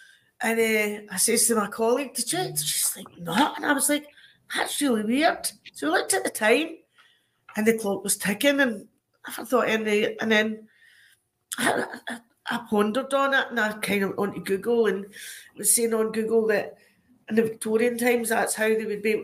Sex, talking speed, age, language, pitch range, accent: female, 210 wpm, 40-59, English, 210-250 Hz, British